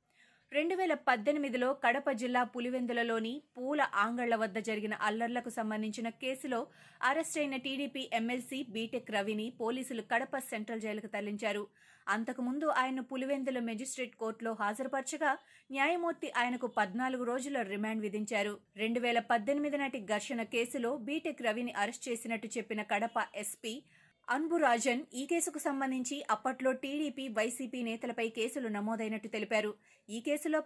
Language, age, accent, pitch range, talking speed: Telugu, 20-39, native, 220-270 Hz, 115 wpm